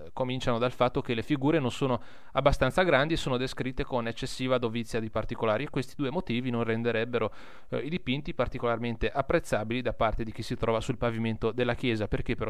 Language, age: Italian, 30-49